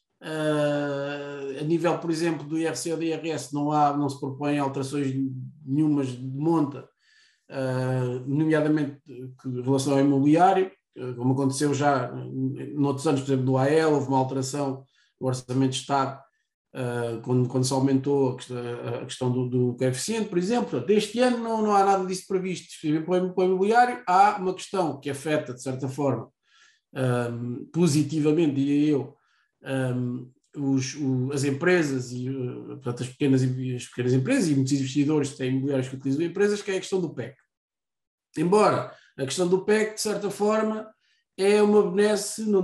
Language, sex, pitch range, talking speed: Portuguese, male, 135-185 Hz, 170 wpm